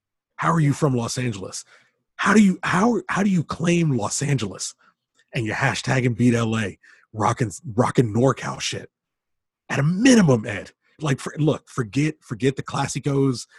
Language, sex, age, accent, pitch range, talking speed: English, male, 30-49, American, 115-160 Hz, 165 wpm